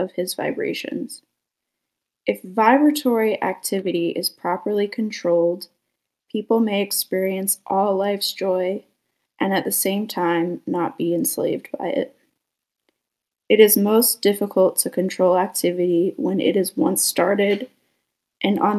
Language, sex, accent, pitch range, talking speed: English, female, American, 185-215 Hz, 120 wpm